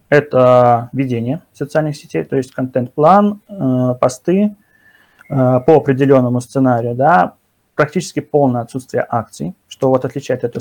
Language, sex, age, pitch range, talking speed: Russian, male, 20-39, 125-150 Hz, 125 wpm